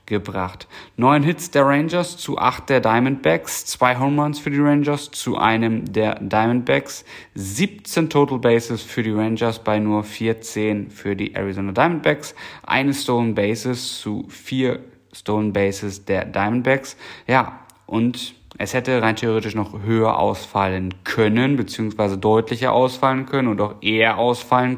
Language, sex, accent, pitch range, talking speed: German, male, German, 100-130 Hz, 145 wpm